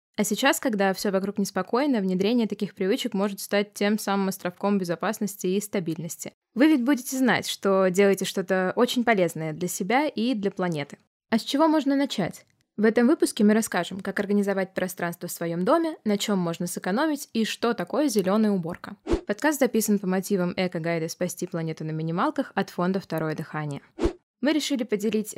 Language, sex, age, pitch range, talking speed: Russian, female, 20-39, 185-240 Hz, 170 wpm